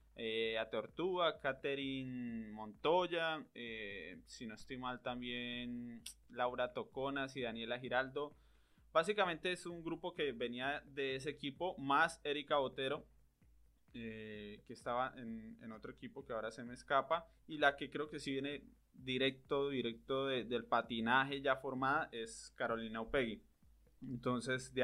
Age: 20-39